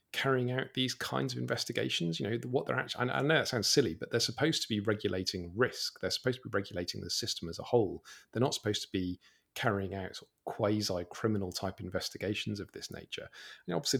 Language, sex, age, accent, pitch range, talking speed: English, male, 40-59, British, 95-115 Hz, 210 wpm